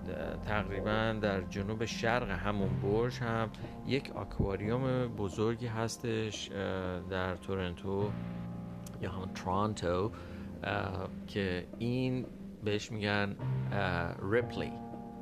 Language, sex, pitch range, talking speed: Persian, male, 90-105 Hz, 85 wpm